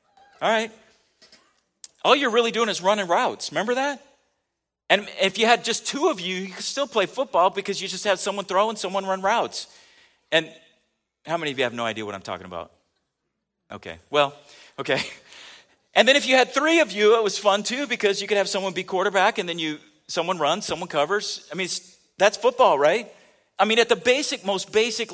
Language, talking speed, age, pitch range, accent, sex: English, 210 wpm, 40-59, 190-240 Hz, American, male